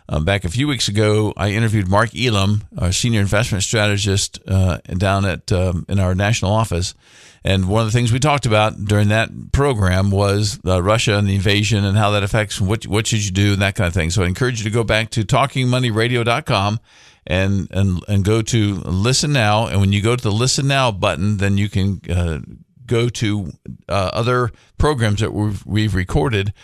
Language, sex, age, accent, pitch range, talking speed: English, male, 50-69, American, 95-115 Hz, 205 wpm